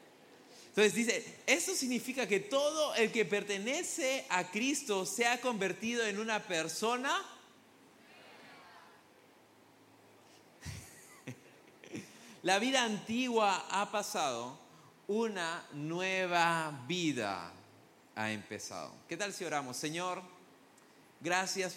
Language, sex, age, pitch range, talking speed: English, male, 30-49, 150-200 Hz, 90 wpm